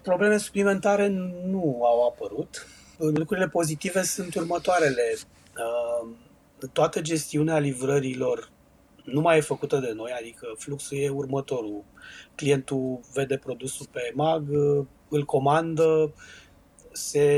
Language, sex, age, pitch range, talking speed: Romanian, male, 30-49, 135-165 Hz, 105 wpm